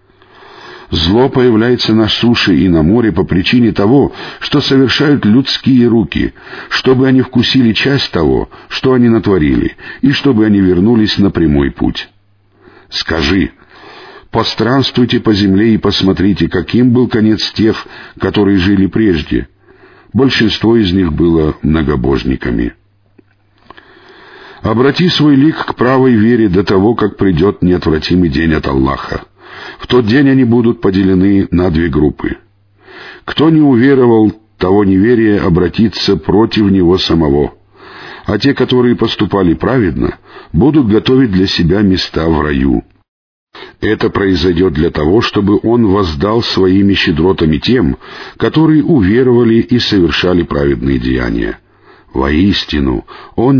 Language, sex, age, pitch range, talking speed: Russian, male, 50-69, 90-125 Hz, 120 wpm